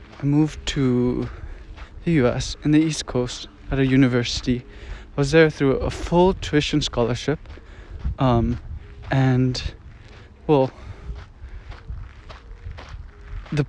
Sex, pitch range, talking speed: male, 105-145 Hz, 105 wpm